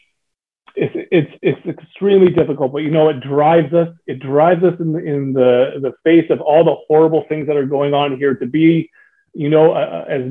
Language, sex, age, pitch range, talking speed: English, male, 30-49, 135-160 Hz, 210 wpm